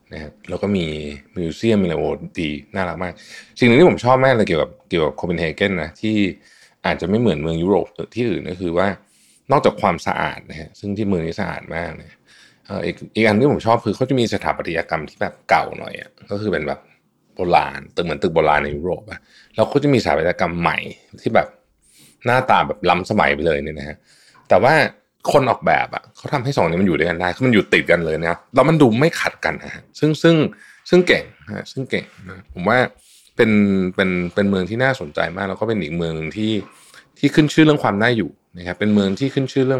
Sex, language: male, Thai